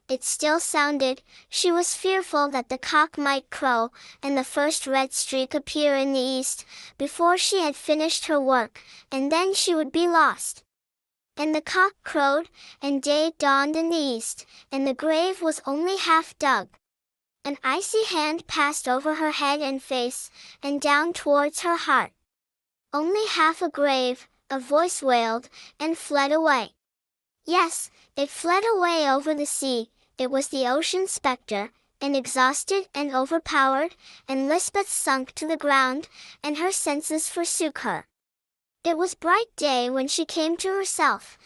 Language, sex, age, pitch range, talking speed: English, male, 10-29, 270-330 Hz, 160 wpm